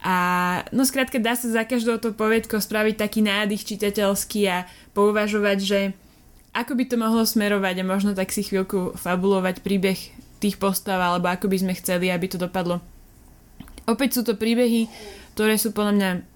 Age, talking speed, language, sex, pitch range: 20-39, 170 wpm, Slovak, female, 200-230 Hz